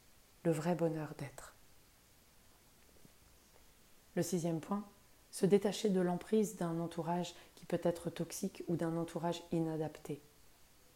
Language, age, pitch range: French, 30-49, 155-175 Hz